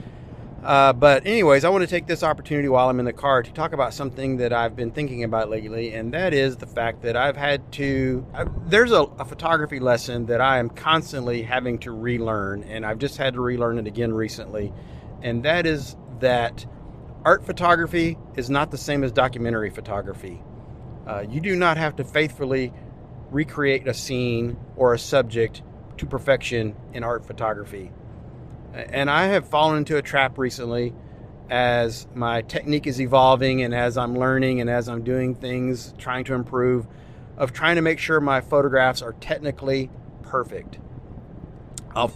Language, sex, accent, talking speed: English, male, American, 170 wpm